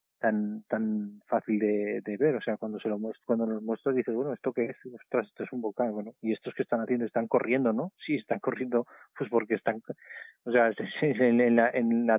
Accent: Spanish